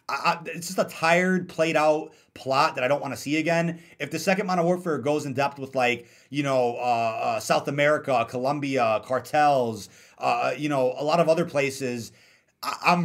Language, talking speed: English, 190 wpm